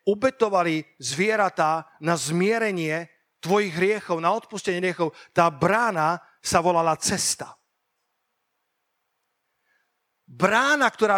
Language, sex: Slovak, male